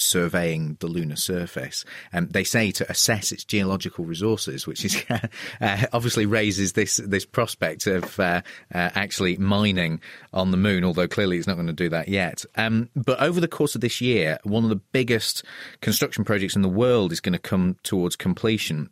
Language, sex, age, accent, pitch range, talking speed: English, male, 30-49, British, 85-105 Hz, 190 wpm